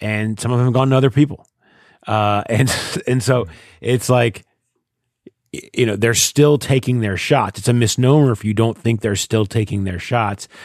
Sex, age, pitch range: male, 30-49, 95-120 Hz